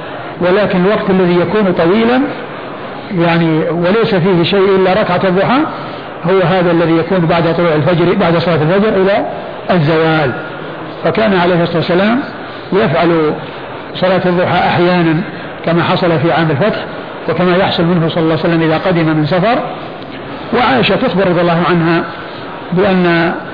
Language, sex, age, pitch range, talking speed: Arabic, male, 50-69, 170-195 Hz, 135 wpm